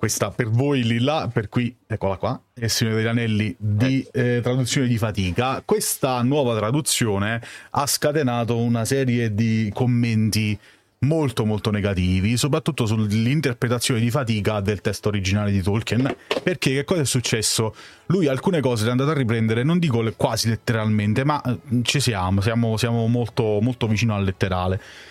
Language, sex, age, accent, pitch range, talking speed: Italian, male, 30-49, native, 105-125 Hz, 155 wpm